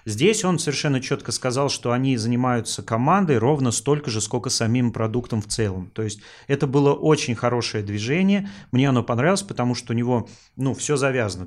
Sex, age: male, 30-49